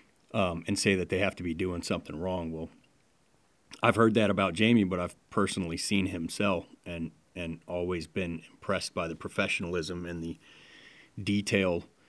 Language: English